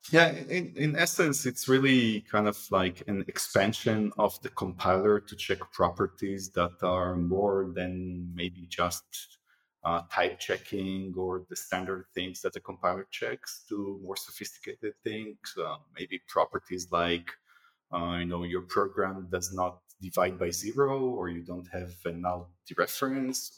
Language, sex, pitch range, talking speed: English, male, 90-105 Hz, 150 wpm